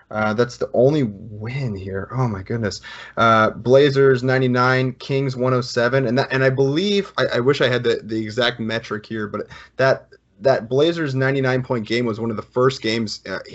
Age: 20-39